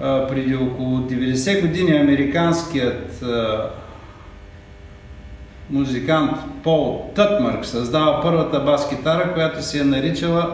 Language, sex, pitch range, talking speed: Bulgarian, male, 110-155 Hz, 90 wpm